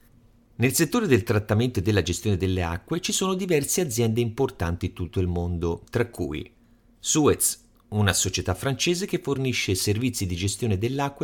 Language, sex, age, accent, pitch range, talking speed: Italian, male, 40-59, native, 100-150 Hz, 160 wpm